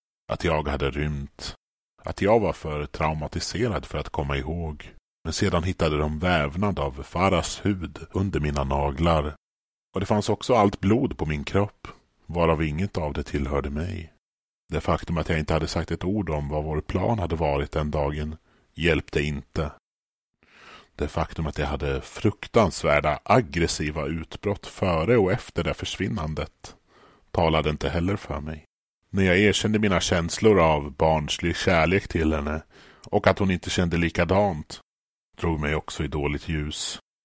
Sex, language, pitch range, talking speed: male, Swedish, 75-95 Hz, 160 wpm